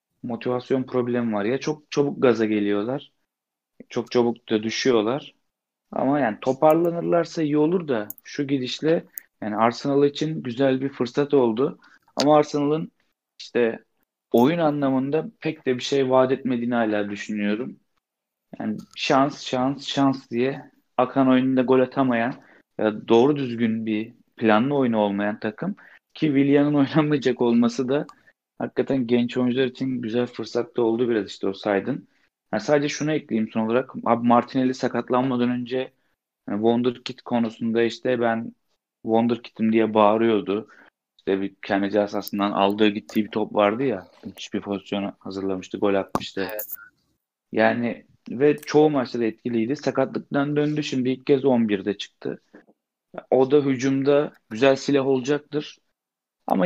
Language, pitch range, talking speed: Turkish, 110-140 Hz, 130 wpm